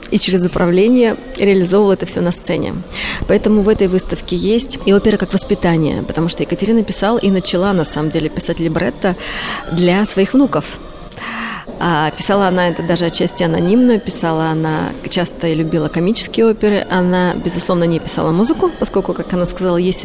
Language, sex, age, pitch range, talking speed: Russian, female, 20-39, 170-205 Hz, 165 wpm